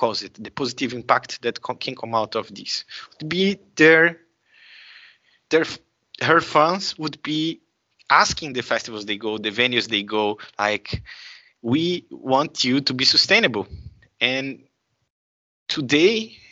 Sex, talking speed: male, 135 wpm